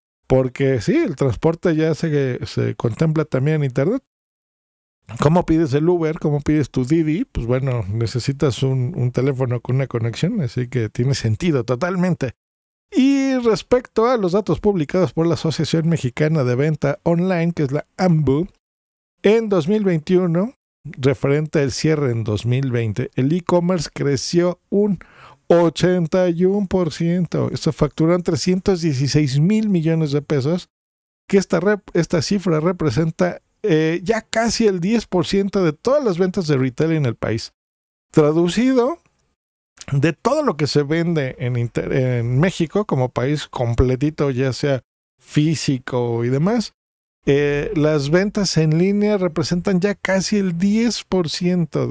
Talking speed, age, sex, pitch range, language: 135 wpm, 50-69, male, 135-180 Hz, Spanish